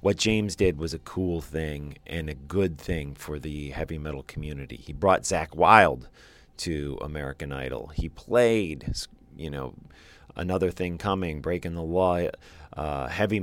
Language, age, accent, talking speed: English, 40-59, American, 155 wpm